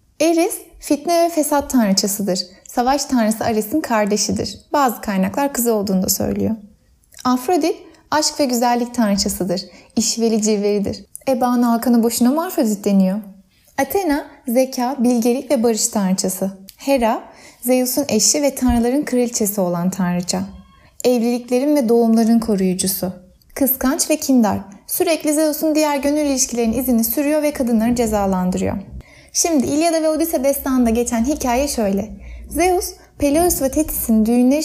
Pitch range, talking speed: 210-285 Hz, 125 wpm